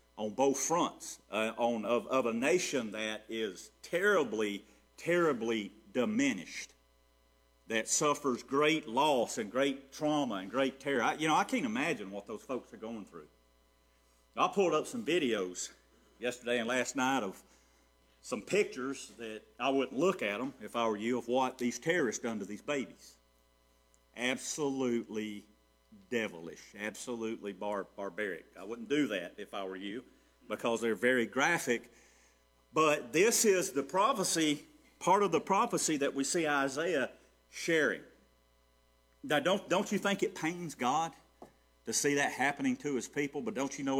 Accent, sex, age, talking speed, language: American, male, 50-69, 160 wpm, English